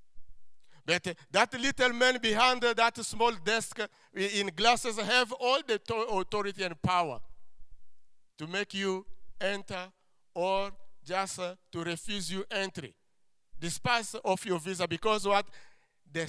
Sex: male